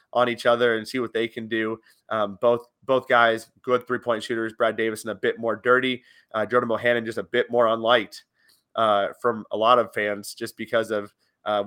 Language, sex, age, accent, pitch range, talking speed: English, male, 30-49, American, 110-130 Hz, 210 wpm